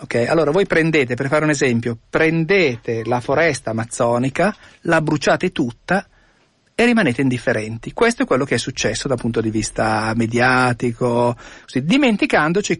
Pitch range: 125-195 Hz